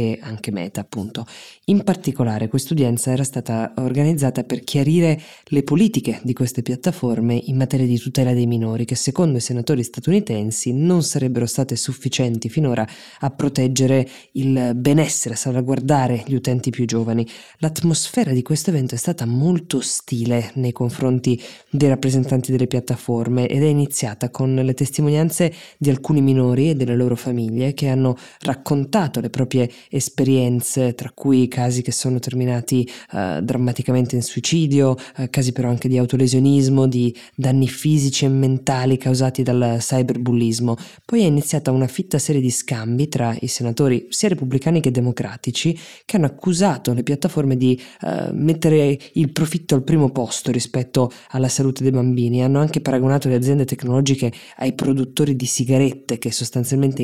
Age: 20-39